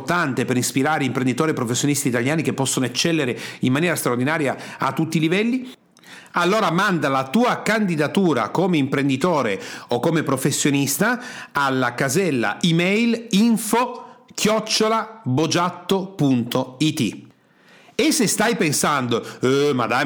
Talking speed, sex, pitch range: 115 wpm, male, 135-180 Hz